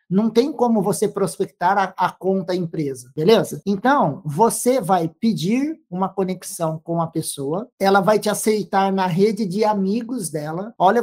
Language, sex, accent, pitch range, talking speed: Portuguese, male, Brazilian, 175-215 Hz, 160 wpm